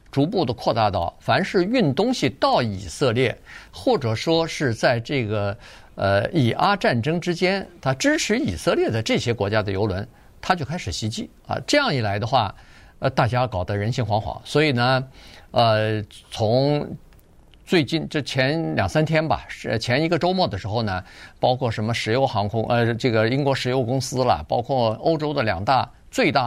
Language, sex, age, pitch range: Chinese, male, 50-69, 110-145 Hz